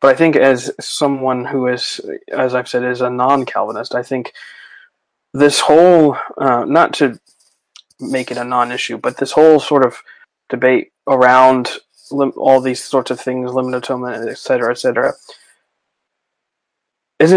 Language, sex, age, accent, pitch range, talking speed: English, male, 20-39, American, 125-140 Hz, 145 wpm